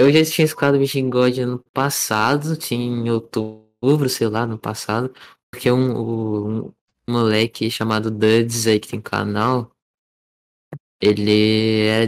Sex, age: male, 20-39